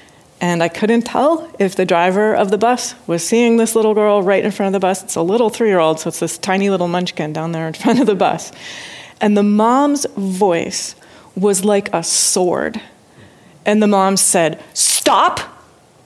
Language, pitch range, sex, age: English, 180-220 Hz, female, 30-49